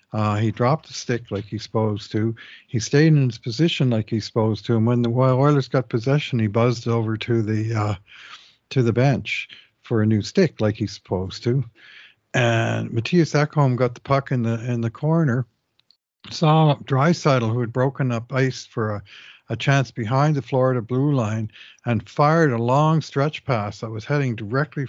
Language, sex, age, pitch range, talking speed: English, male, 60-79, 110-135 Hz, 190 wpm